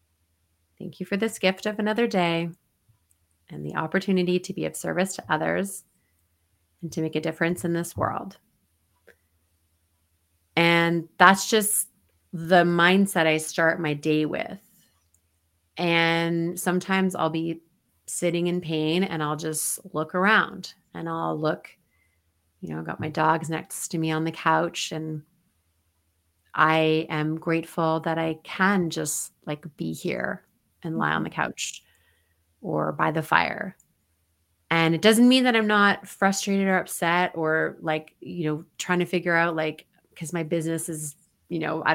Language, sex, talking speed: English, female, 155 wpm